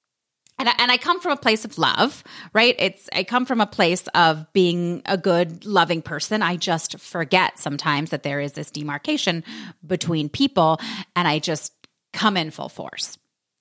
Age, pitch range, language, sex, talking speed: 30-49, 150-195 Hz, English, female, 175 wpm